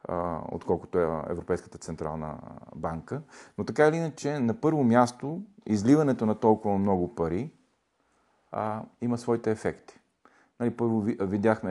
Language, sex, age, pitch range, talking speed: Bulgarian, male, 40-59, 85-115 Hz, 115 wpm